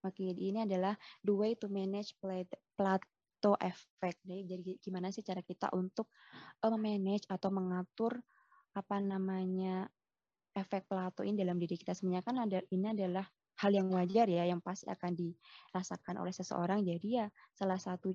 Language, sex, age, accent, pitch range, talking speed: Indonesian, female, 20-39, native, 180-205 Hz, 140 wpm